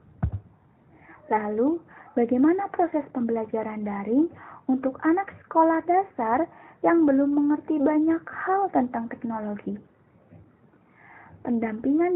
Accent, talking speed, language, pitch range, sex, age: native, 85 wpm, Indonesian, 230-330 Hz, female, 20-39